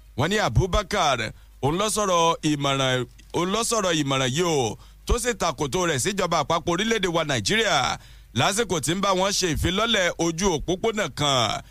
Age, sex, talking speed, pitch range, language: 50-69, male, 130 wpm, 155-205 Hz, English